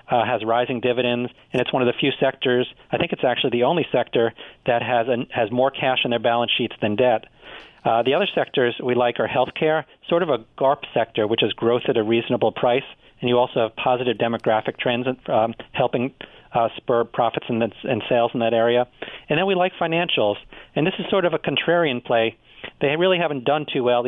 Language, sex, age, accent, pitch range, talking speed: English, male, 40-59, American, 120-140 Hz, 215 wpm